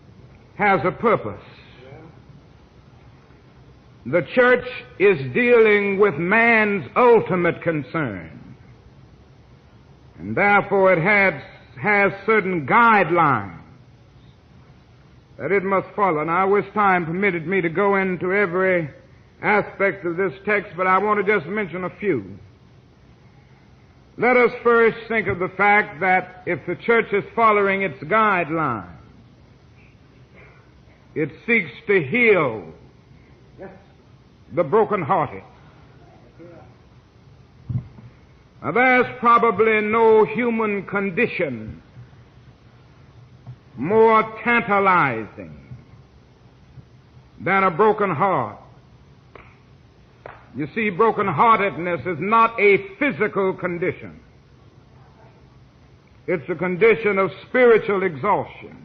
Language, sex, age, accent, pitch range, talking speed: English, male, 60-79, American, 155-215 Hz, 95 wpm